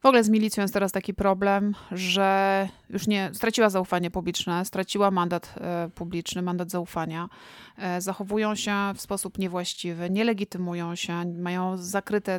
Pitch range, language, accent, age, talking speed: 175-205 Hz, Polish, native, 30-49, 135 wpm